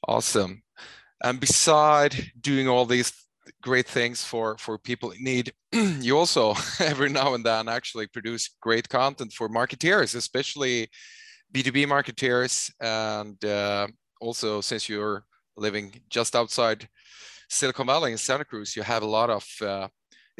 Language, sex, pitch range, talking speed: English, male, 105-135 Hz, 140 wpm